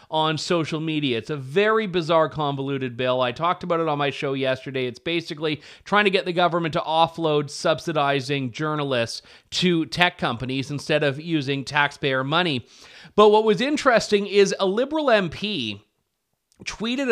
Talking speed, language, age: 160 wpm, English, 30-49